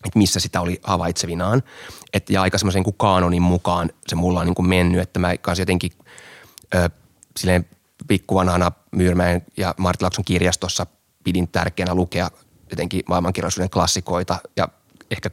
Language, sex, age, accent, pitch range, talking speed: Finnish, male, 30-49, native, 90-105 Hz, 140 wpm